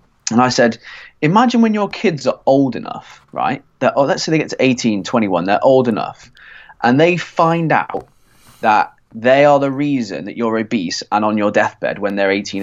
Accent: British